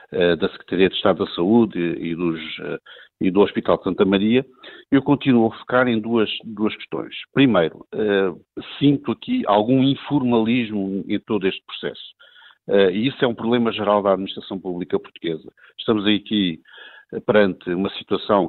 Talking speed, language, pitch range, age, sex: 150 wpm, Portuguese, 95-115 Hz, 50-69, male